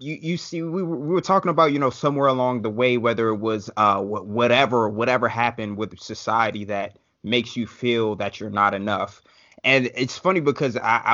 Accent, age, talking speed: American, 20-39, 200 wpm